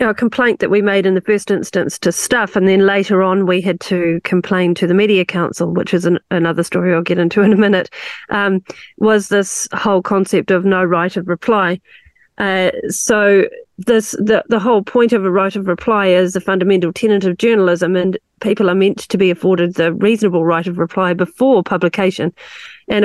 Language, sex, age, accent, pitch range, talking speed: English, female, 40-59, Australian, 180-215 Hz, 200 wpm